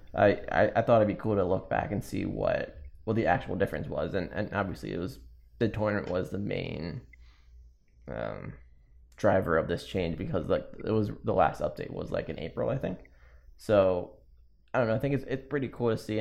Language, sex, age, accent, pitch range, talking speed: English, male, 20-39, American, 65-110 Hz, 210 wpm